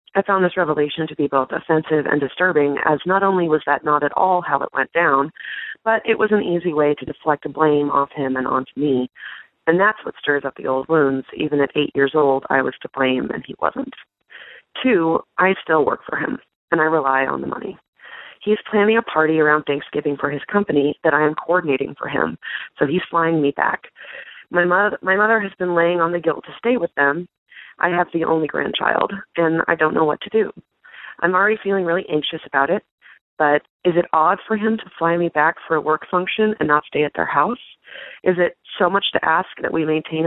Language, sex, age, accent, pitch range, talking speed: English, female, 30-49, American, 145-180 Hz, 225 wpm